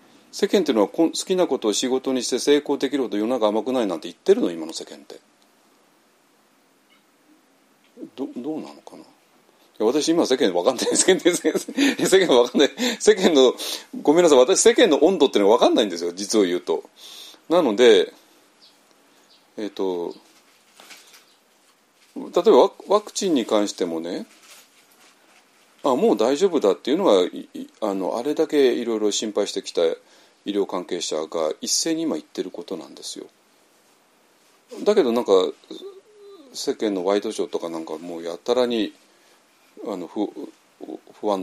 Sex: male